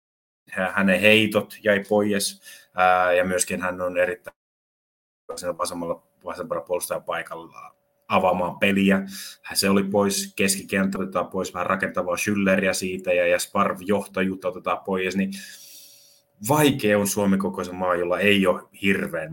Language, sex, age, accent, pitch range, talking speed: Finnish, male, 30-49, native, 90-110 Hz, 125 wpm